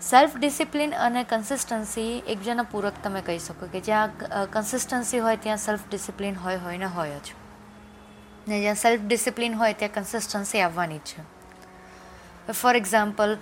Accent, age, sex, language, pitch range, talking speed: native, 20-39, female, Gujarati, 195-230 Hz, 105 wpm